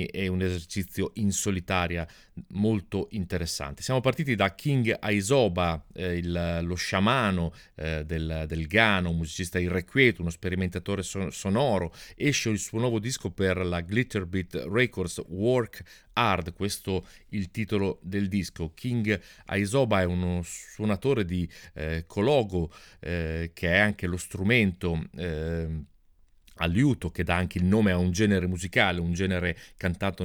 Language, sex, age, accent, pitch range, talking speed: Italian, male, 40-59, native, 85-105 Hz, 140 wpm